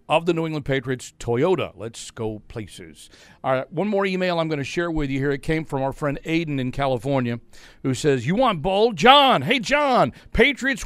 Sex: male